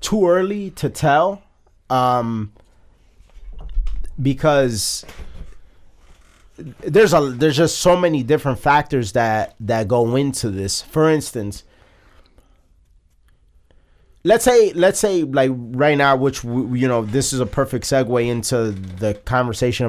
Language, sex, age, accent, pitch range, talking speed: English, male, 30-49, American, 105-150 Hz, 120 wpm